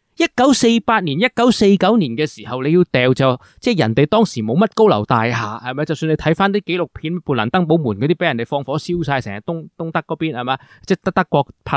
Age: 20-39